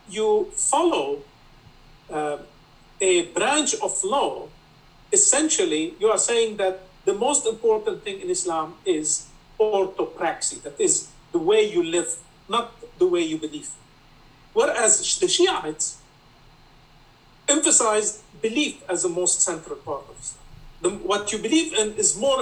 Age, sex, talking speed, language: 50-69, male, 130 wpm, English